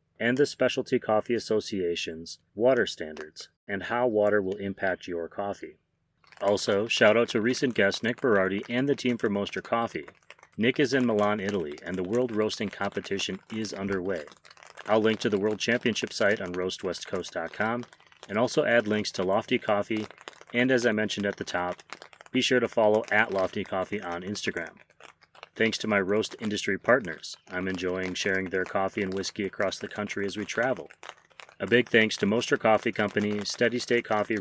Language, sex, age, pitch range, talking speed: English, male, 30-49, 95-115 Hz, 175 wpm